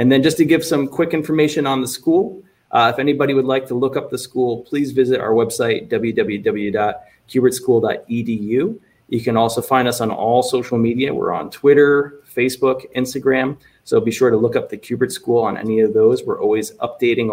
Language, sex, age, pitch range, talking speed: English, male, 30-49, 115-150 Hz, 195 wpm